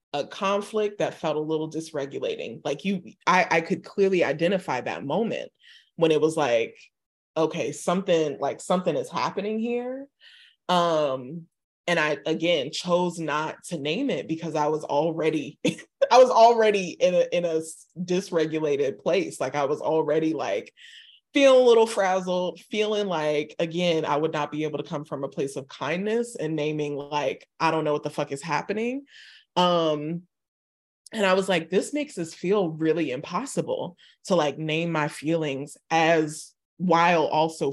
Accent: American